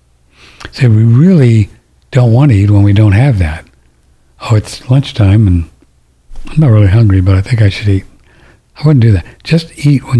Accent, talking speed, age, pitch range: American, 200 wpm, 60-79, 80-115 Hz